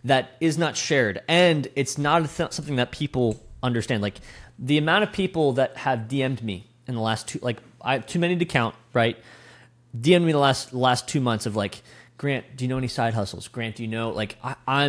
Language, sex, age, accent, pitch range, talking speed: English, male, 20-39, American, 115-140 Hz, 230 wpm